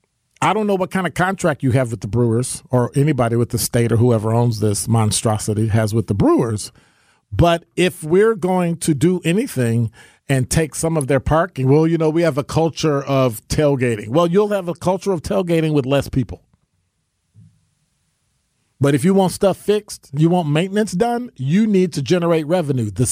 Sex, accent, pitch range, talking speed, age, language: male, American, 130-185 Hz, 190 wpm, 50-69, English